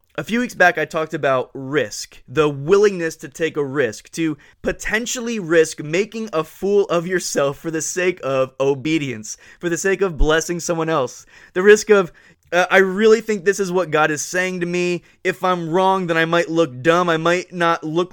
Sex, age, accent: male, 20-39, American